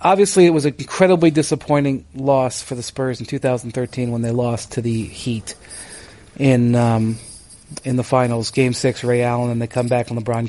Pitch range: 120-145 Hz